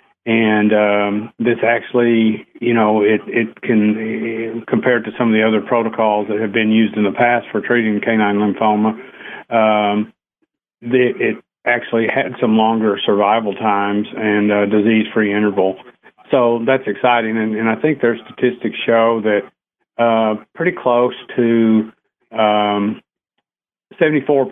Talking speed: 130 wpm